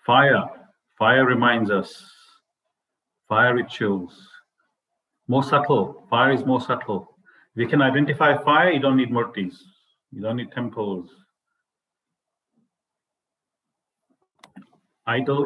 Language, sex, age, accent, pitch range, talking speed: English, male, 50-69, Indian, 120-145 Hz, 95 wpm